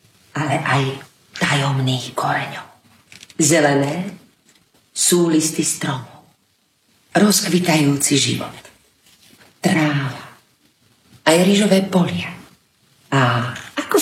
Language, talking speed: Slovak, 70 wpm